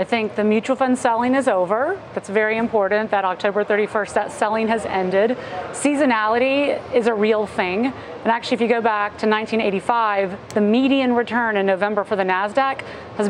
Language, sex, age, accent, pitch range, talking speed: English, female, 30-49, American, 210-245 Hz, 180 wpm